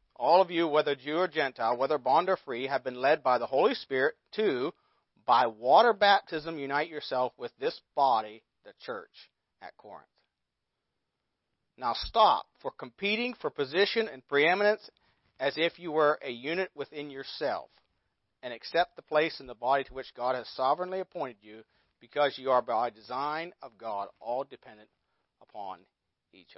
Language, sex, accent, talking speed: English, male, American, 165 wpm